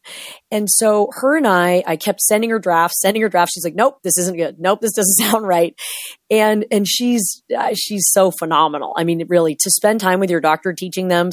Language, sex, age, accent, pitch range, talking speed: English, female, 30-49, American, 160-205 Hz, 225 wpm